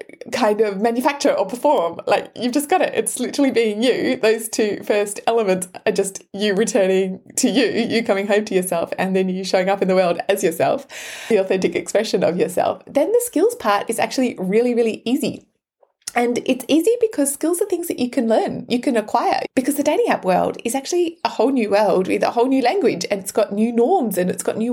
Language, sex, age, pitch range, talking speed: English, female, 20-39, 200-275 Hz, 225 wpm